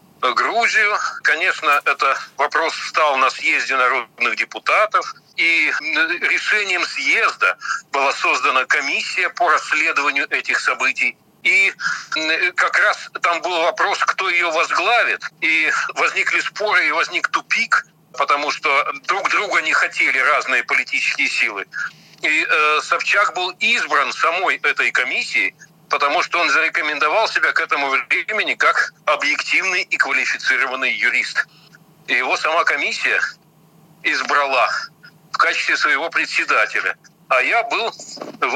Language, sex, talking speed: Russian, male, 115 wpm